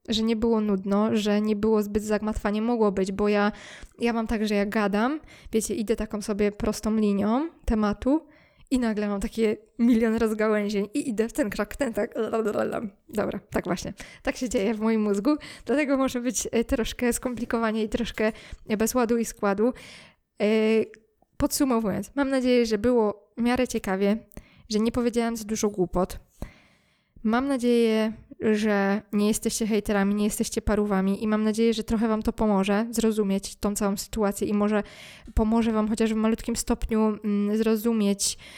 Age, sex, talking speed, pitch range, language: 20-39, female, 160 wpm, 210-235 Hz, Polish